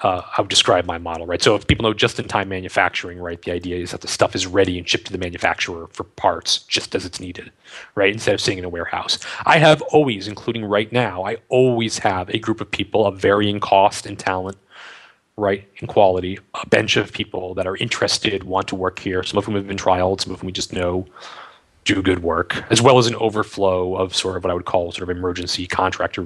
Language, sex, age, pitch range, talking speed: English, male, 30-49, 95-110 Hz, 235 wpm